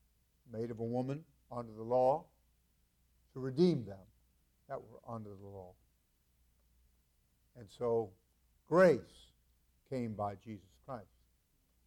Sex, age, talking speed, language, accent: male, 60-79, 110 wpm, English, American